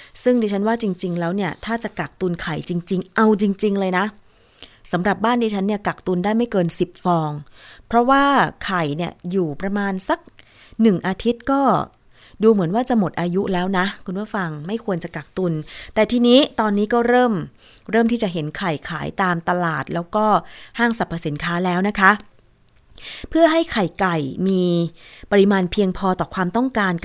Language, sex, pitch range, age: Thai, female, 175-220 Hz, 20-39